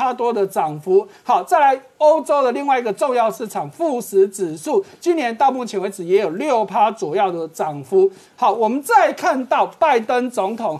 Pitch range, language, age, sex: 205-330 Hz, Chinese, 50-69, male